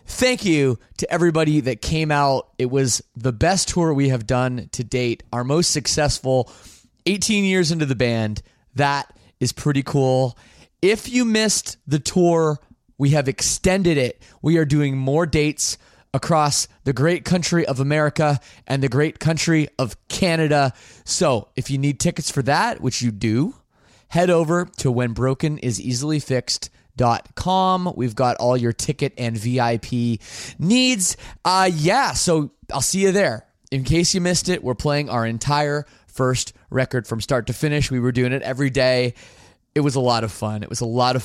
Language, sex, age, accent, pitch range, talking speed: English, male, 20-39, American, 120-165 Hz, 175 wpm